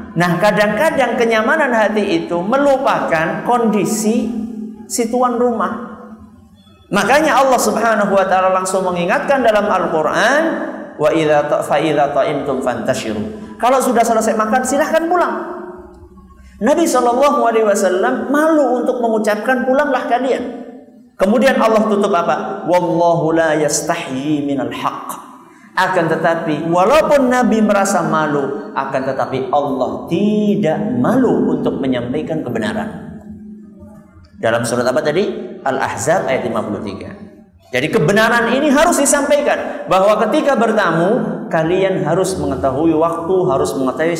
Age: 50-69